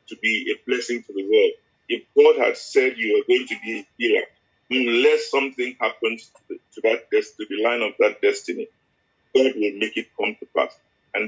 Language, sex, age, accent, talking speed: English, male, 50-69, Nigerian, 190 wpm